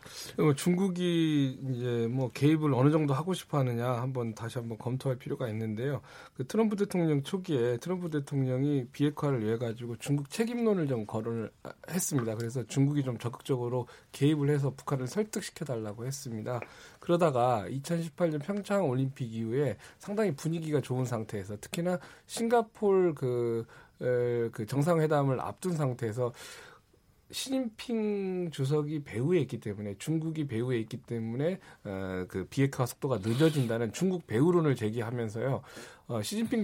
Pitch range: 120-160 Hz